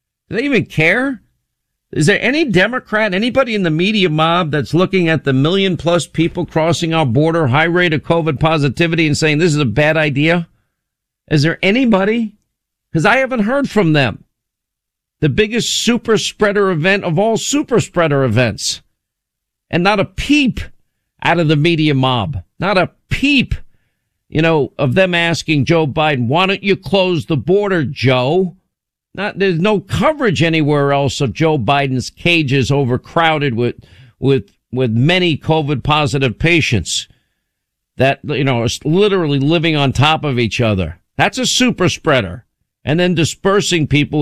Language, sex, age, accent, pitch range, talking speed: English, male, 50-69, American, 140-185 Hz, 160 wpm